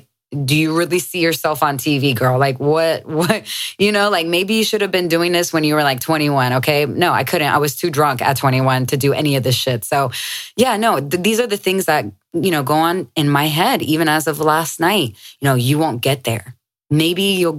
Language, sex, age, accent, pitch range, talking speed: English, female, 20-39, American, 125-160 Hz, 240 wpm